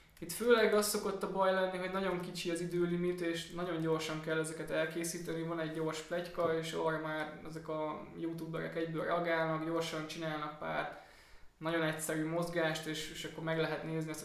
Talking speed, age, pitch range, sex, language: 185 wpm, 20-39, 155-170 Hz, male, Hungarian